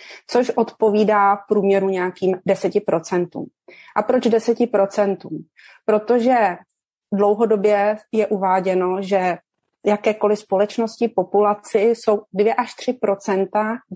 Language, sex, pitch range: Czech, female, 185-215 Hz